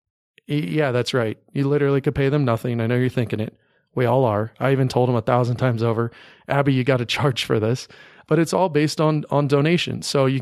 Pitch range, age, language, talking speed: 120-140 Hz, 30-49, English, 235 wpm